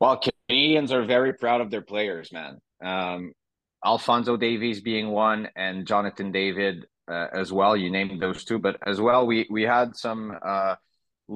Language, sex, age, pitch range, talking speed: English, male, 30-49, 100-115 Hz, 170 wpm